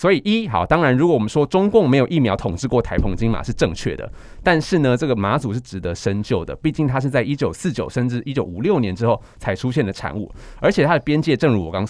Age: 20-39